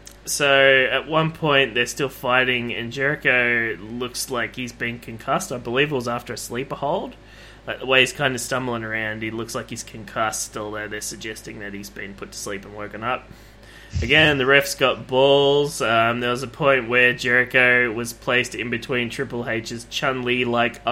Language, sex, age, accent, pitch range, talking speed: English, male, 20-39, Australian, 115-135 Hz, 185 wpm